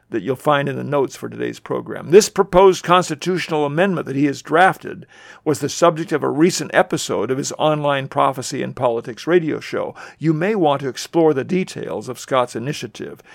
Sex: male